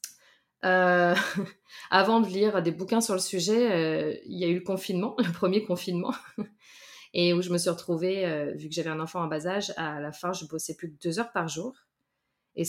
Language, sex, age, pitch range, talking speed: French, female, 20-39, 165-190 Hz, 220 wpm